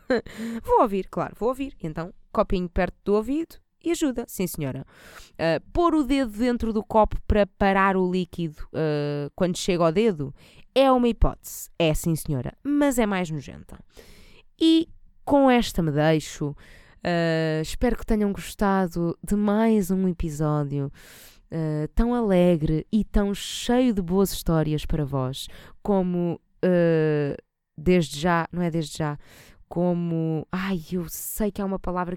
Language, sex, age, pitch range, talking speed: Portuguese, female, 20-39, 155-210 Hz, 140 wpm